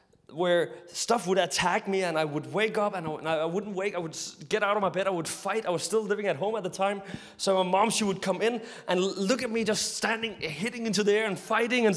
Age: 30-49